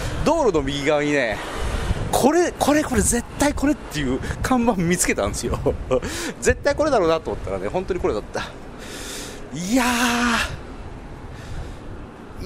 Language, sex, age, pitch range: Japanese, male, 40-59, 105-175 Hz